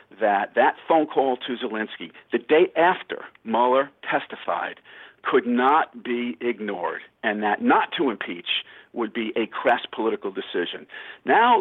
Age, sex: 50-69, male